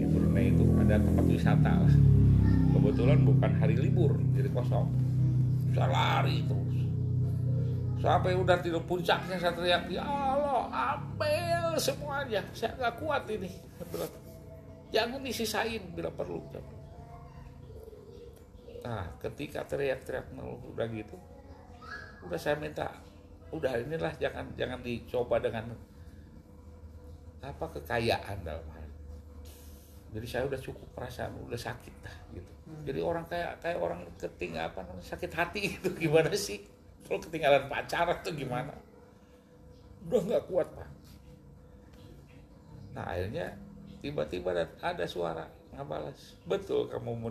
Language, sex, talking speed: Indonesian, male, 110 wpm